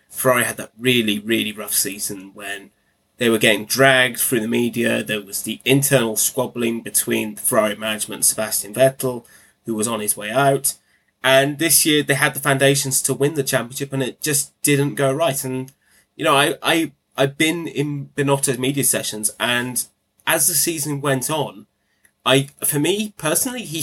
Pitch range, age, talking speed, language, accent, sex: 110-140 Hz, 20-39, 185 wpm, English, British, male